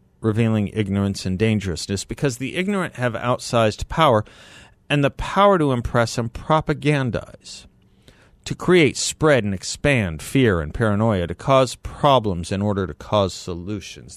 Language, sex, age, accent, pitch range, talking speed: English, male, 50-69, American, 95-125 Hz, 140 wpm